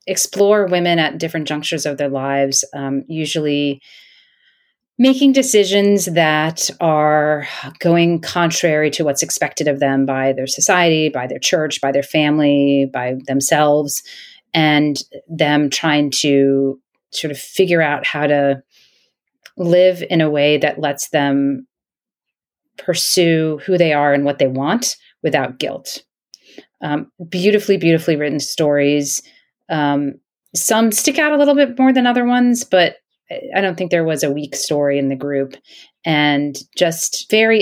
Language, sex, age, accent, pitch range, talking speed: English, female, 30-49, American, 145-175 Hz, 145 wpm